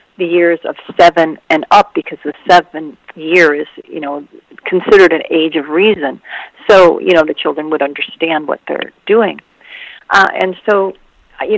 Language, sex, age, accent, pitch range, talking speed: English, female, 50-69, American, 155-185 Hz, 165 wpm